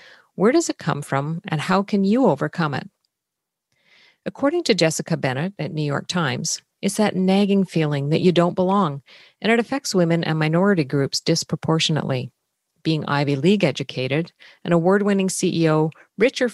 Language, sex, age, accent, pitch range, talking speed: English, female, 50-69, American, 145-190 Hz, 160 wpm